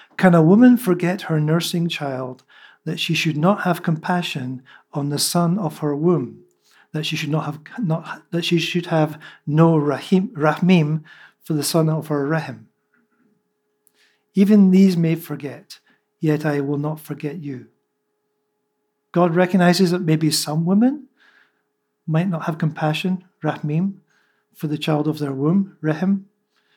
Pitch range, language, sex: 150-185 Hz, English, male